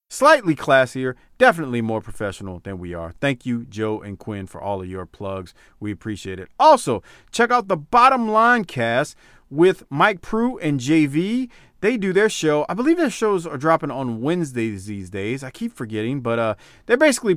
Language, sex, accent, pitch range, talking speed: English, male, American, 110-180 Hz, 185 wpm